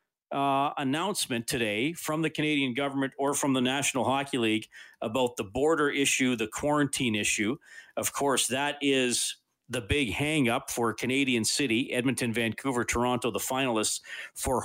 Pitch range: 110-135 Hz